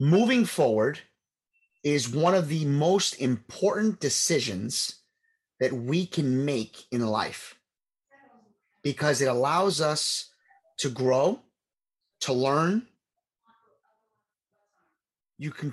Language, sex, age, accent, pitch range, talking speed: English, male, 30-49, American, 135-205 Hz, 95 wpm